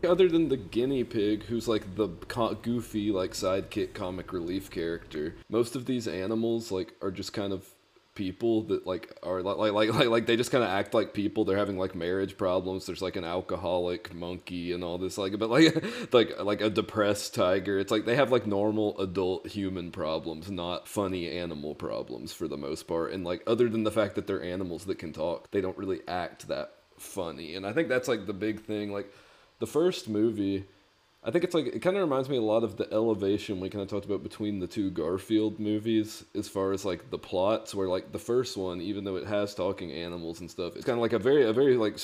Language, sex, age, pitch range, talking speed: English, male, 30-49, 90-110 Hz, 225 wpm